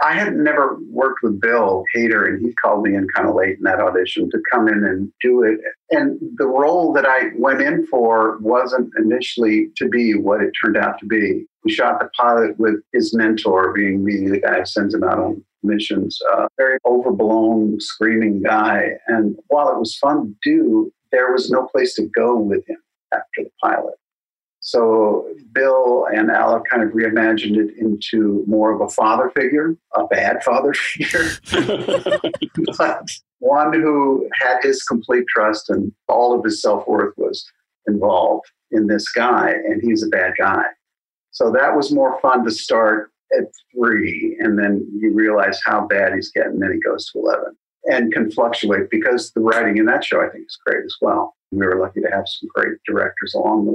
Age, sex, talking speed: 50-69, male, 190 wpm